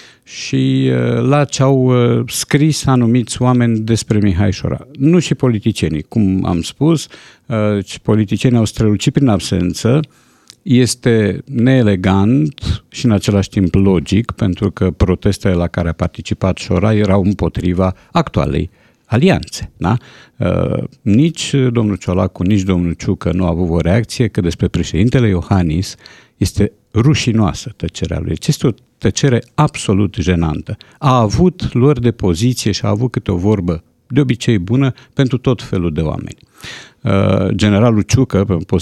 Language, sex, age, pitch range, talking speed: Romanian, male, 50-69, 95-125 Hz, 135 wpm